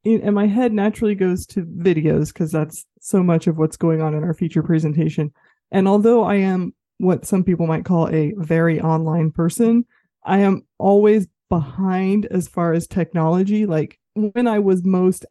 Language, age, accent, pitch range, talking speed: English, 20-39, American, 160-200 Hz, 175 wpm